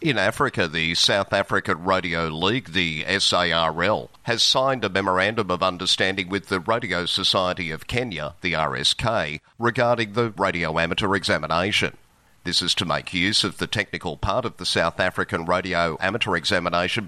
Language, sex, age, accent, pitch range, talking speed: English, male, 50-69, Australian, 85-105 Hz, 155 wpm